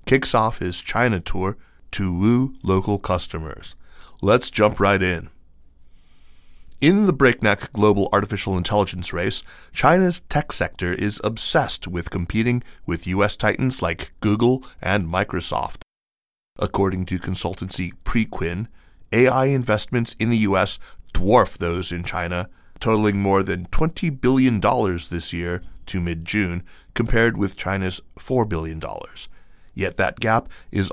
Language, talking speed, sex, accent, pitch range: English, 125 wpm, male, American, 90-110 Hz